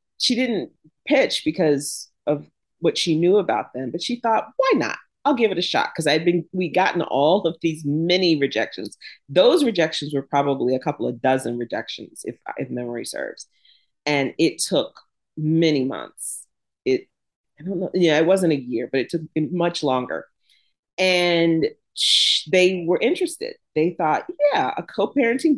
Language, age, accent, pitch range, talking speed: English, 40-59, American, 150-195 Hz, 170 wpm